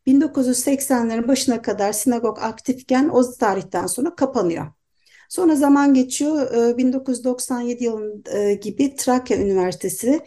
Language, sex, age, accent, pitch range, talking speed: Turkish, female, 60-79, native, 205-265 Hz, 100 wpm